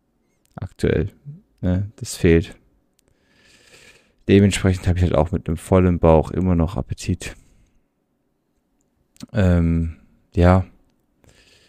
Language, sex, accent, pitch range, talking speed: German, male, German, 90-110 Hz, 90 wpm